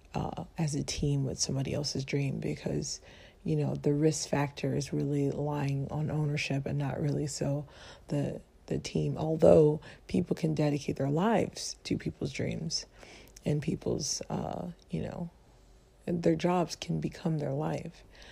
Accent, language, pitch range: American, English, 145-175 Hz